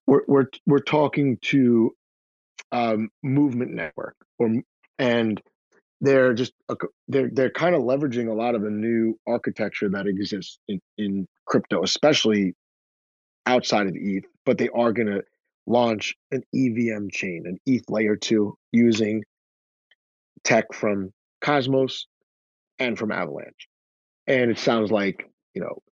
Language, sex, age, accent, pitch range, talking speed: English, male, 30-49, American, 105-125 Hz, 140 wpm